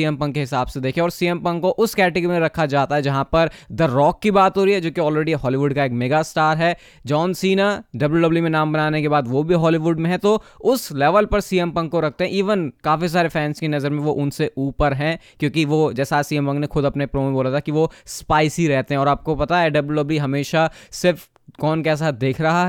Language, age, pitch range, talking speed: Hindi, 20-39, 145-180 Hz, 250 wpm